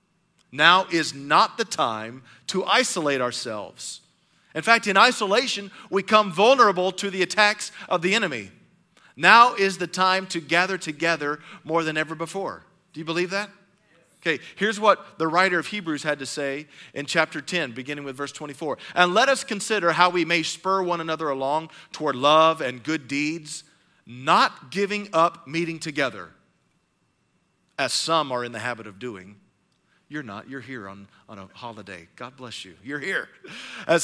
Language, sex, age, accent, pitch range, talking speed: English, male, 40-59, American, 155-200 Hz, 170 wpm